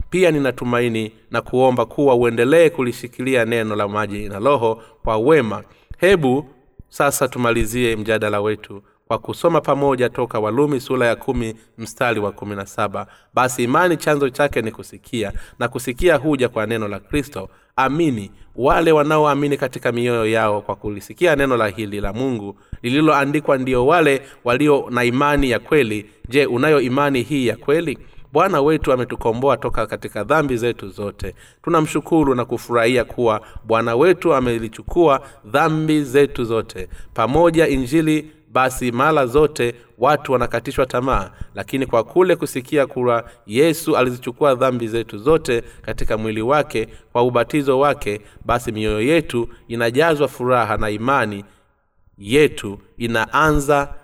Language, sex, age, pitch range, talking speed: Swahili, male, 30-49, 105-140 Hz, 135 wpm